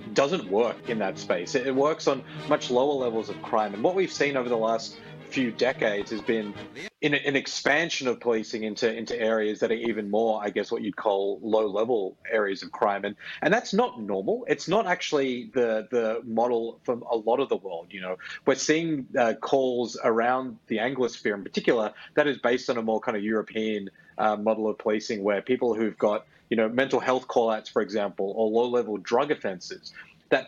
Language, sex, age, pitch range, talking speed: English, male, 30-49, 110-135 Hz, 205 wpm